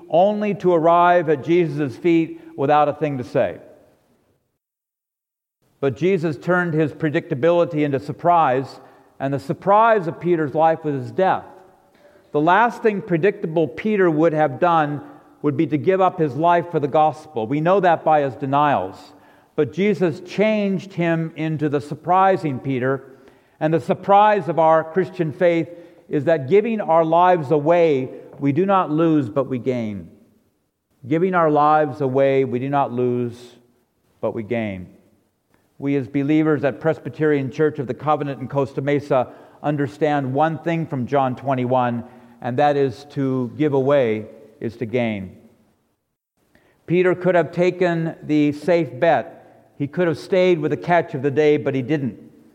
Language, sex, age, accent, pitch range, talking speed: English, male, 50-69, American, 135-170 Hz, 155 wpm